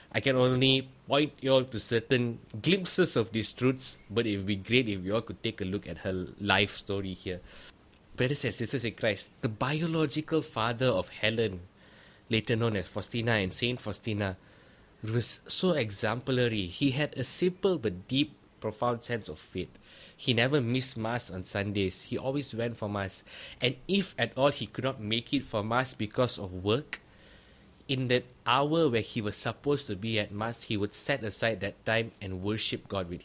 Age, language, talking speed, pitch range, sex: 20-39, English, 190 wpm, 100-130 Hz, male